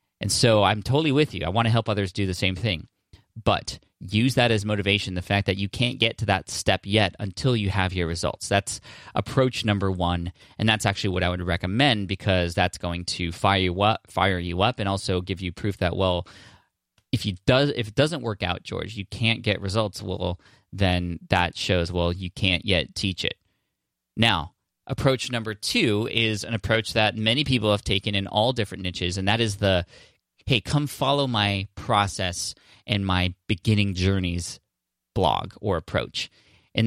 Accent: American